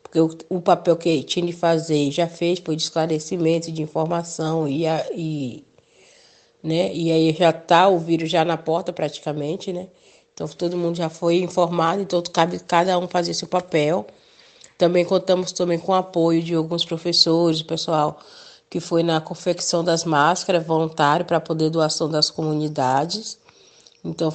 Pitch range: 160-180 Hz